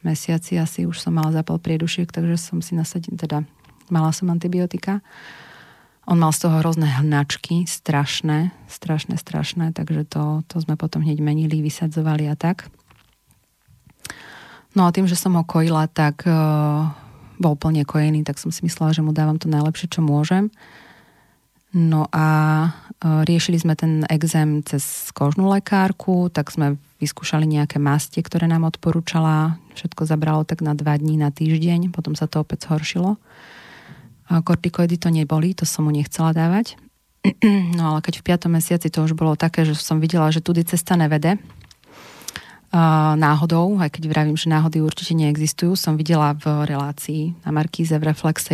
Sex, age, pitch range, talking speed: female, 30-49, 155-170 Hz, 160 wpm